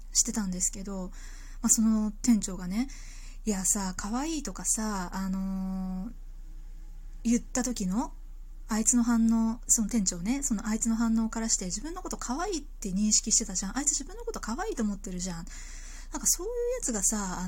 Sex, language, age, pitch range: female, Japanese, 20-39, 200-255 Hz